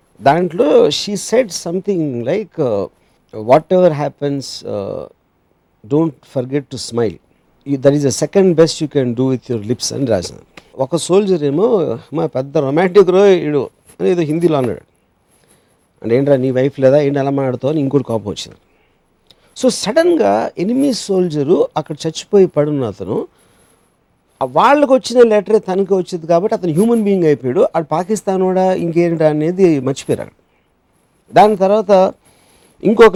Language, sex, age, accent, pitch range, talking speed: Telugu, male, 50-69, native, 140-195 Hz, 140 wpm